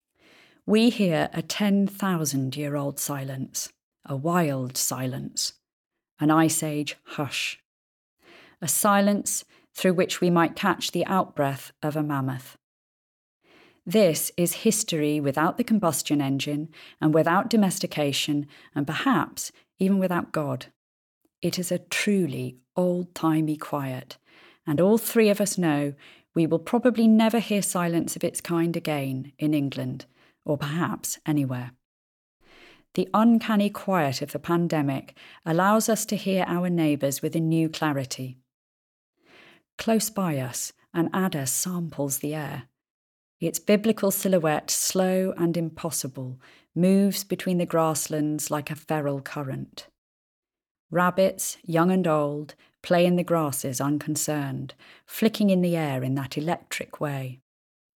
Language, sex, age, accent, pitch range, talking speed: English, female, 30-49, British, 145-185 Hz, 125 wpm